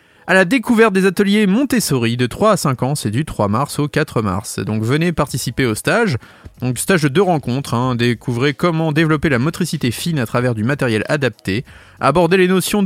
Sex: male